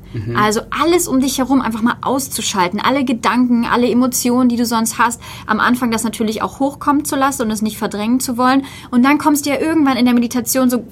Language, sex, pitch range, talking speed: German, female, 195-245 Hz, 220 wpm